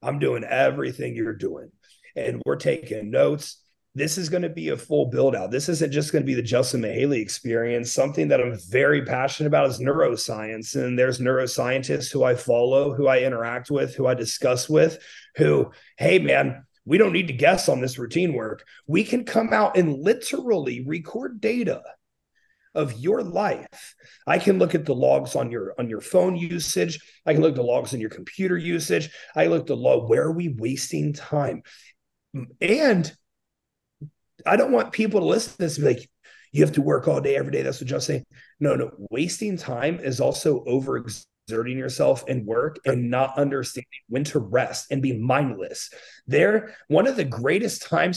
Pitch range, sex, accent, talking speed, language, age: 130-175 Hz, male, American, 195 wpm, English, 30-49